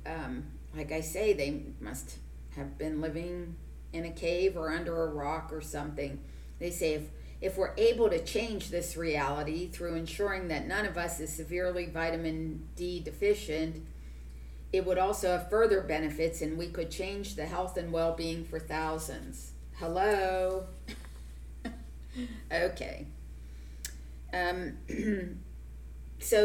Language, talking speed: English, 135 wpm